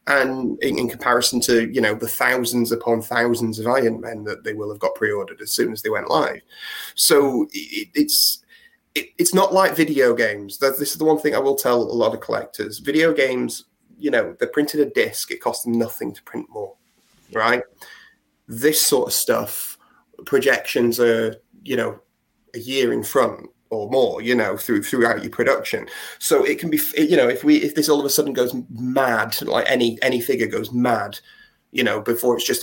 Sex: male